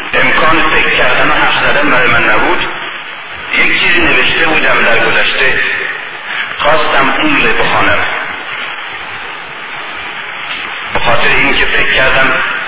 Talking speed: 105 wpm